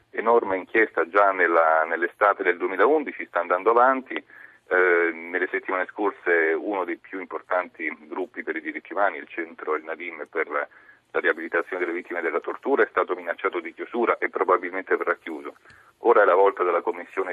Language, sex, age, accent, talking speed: Italian, male, 40-59, native, 175 wpm